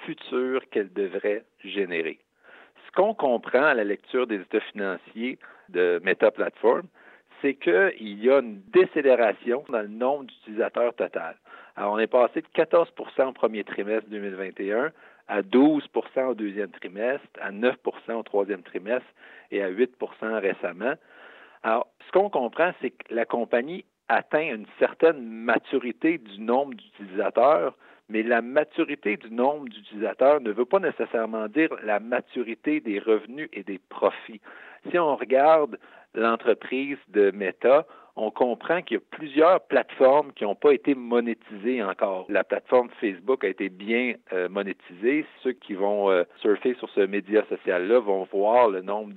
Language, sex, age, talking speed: French, male, 50-69, 150 wpm